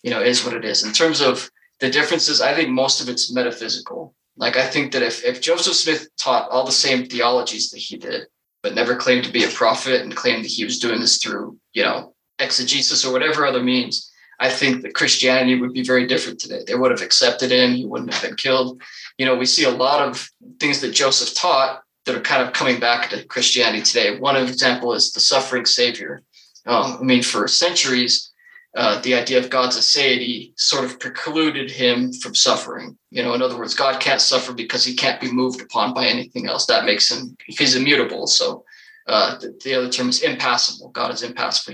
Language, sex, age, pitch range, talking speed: English, male, 20-39, 125-140 Hz, 215 wpm